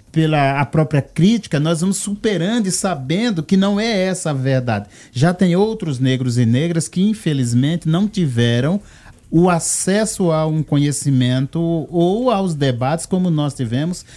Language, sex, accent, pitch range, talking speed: Portuguese, male, Brazilian, 125-185 Hz, 155 wpm